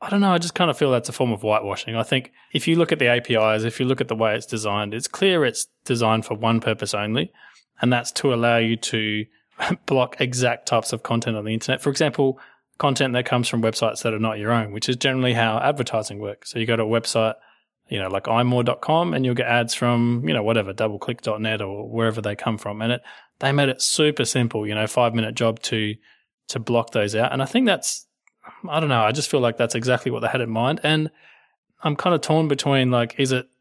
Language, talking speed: English, 245 wpm